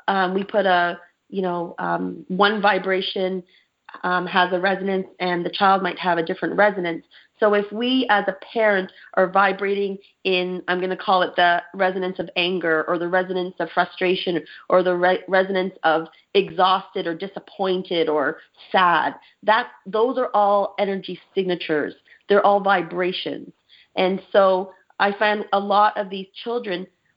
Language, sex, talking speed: English, female, 160 wpm